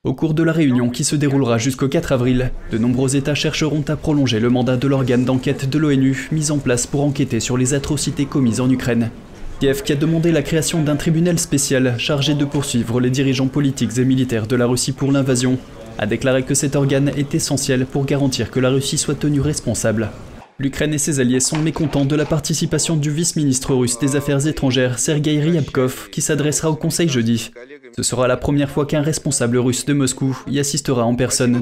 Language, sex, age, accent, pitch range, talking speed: French, male, 20-39, French, 125-150 Hz, 205 wpm